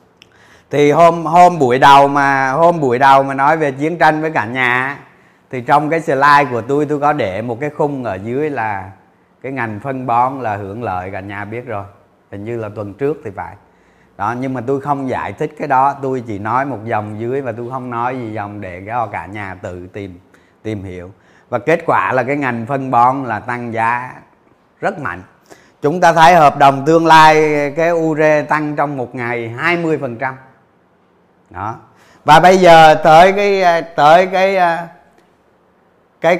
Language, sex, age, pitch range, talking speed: Vietnamese, male, 20-39, 115-150 Hz, 190 wpm